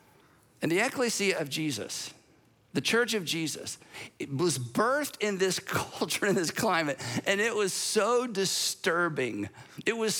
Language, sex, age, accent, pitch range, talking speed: English, male, 50-69, American, 160-220 Hz, 145 wpm